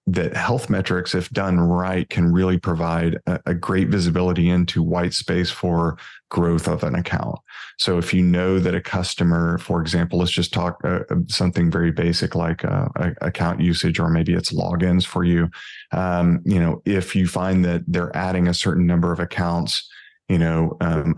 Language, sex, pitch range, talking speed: English, male, 85-90 Hz, 180 wpm